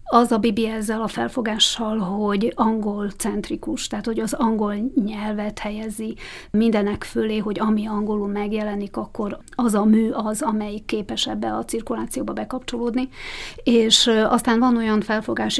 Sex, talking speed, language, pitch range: female, 140 wpm, Hungarian, 205-225 Hz